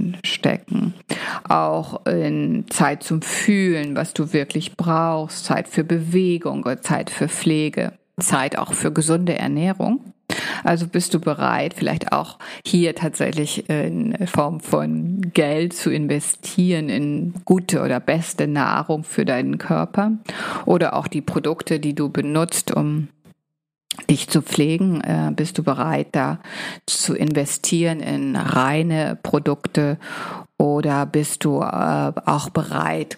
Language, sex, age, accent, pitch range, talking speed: German, female, 50-69, German, 145-180 Hz, 125 wpm